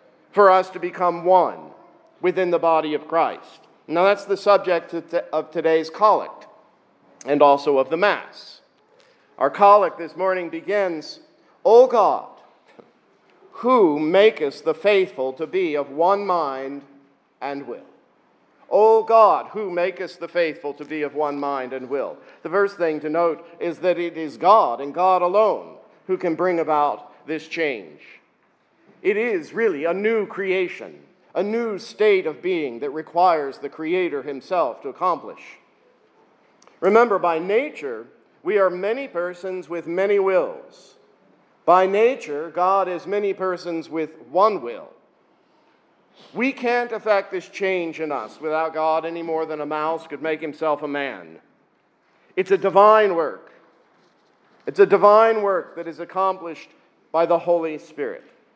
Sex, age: male, 50-69